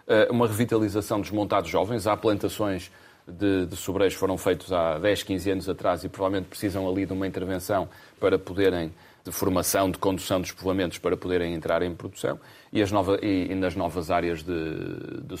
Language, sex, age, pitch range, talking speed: Portuguese, male, 30-49, 90-105 Hz, 185 wpm